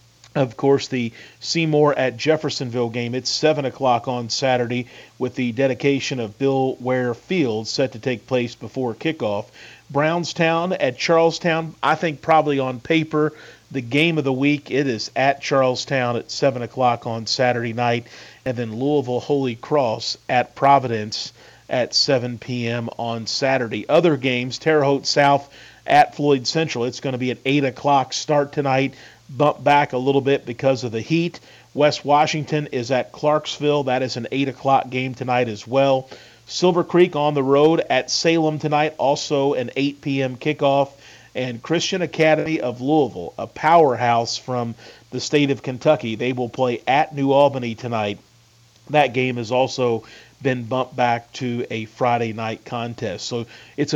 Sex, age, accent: male, 40-59, American